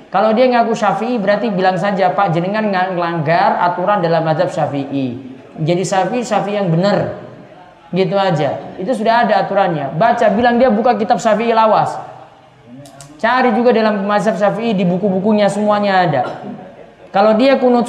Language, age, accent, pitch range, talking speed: Indonesian, 20-39, native, 180-245 Hz, 150 wpm